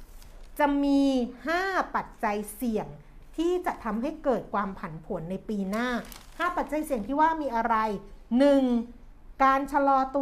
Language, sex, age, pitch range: Thai, female, 60-79, 205-265 Hz